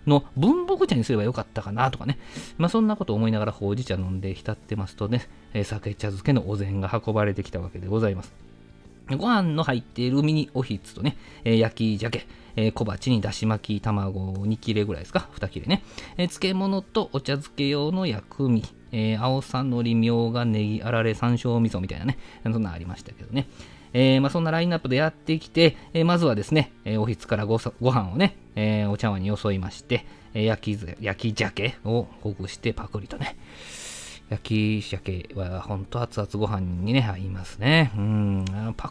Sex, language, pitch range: male, Japanese, 105-130 Hz